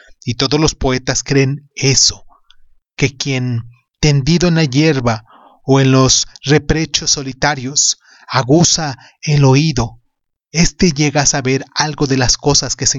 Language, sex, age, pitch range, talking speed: Spanish, male, 30-49, 125-155 Hz, 140 wpm